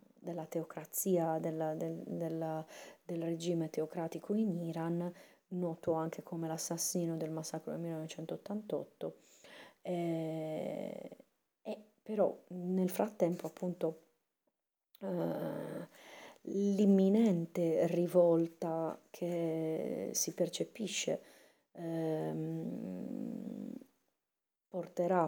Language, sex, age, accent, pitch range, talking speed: Italian, female, 30-49, native, 165-190 Hz, 60 wpm